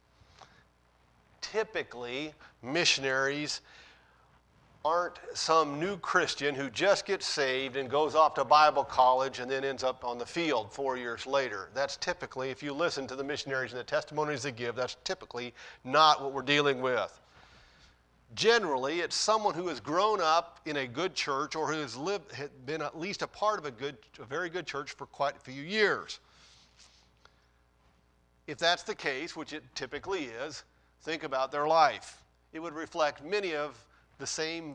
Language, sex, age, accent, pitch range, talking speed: English, male, 50-69, American, 130-170 Hz, 170 wpm